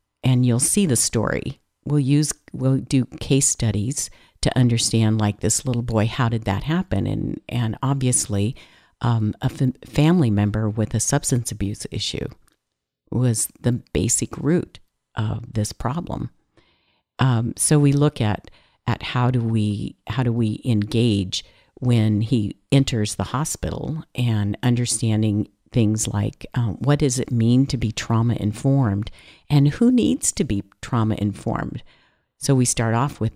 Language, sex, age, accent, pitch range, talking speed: English, female, 50-69, American, 110-145 Hz, 150 wpm